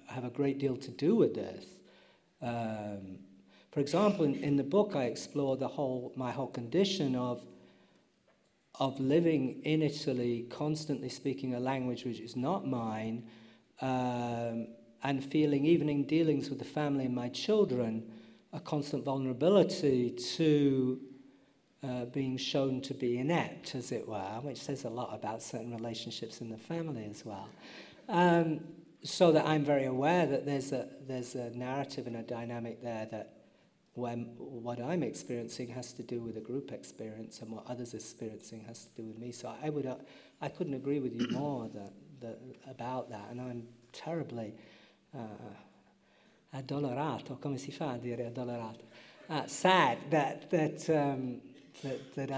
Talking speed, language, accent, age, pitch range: 155 wpm, English, British, 50-69, 115-140 Hz